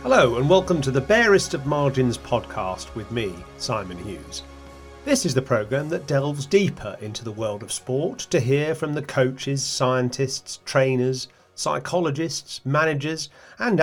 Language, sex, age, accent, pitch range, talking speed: English, male, 40-59, British, 120-155 Hz, 150 wpm